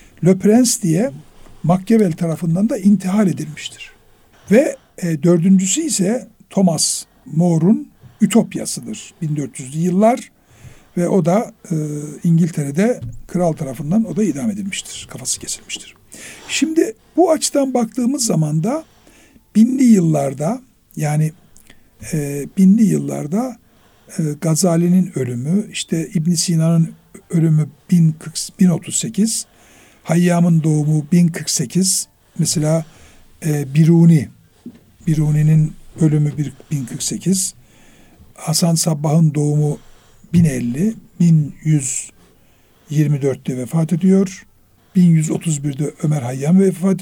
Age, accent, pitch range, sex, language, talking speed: 60-79, native, 155-195 Hz, male, Turkish, 90 wpm